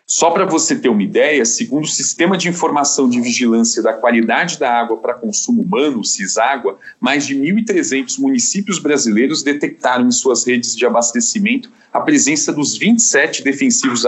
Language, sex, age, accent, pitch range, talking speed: English, male, 40-59, Brazilian, 135-225 Hz, 160 wpm